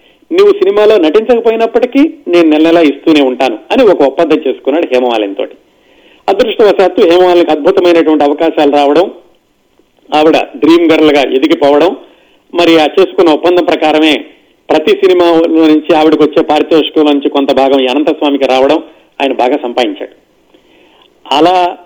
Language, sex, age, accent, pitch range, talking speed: Telugu, male, 40-59, native, 145-180 Hz, 115 wpm